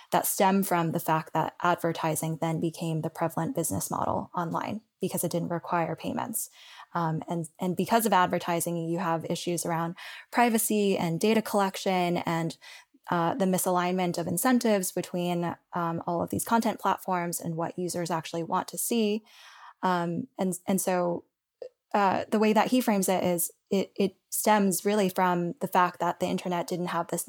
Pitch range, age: 170-205 Hz, 10-29